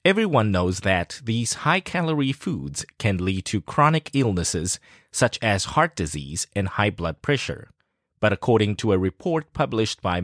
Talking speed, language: 150 wpm, English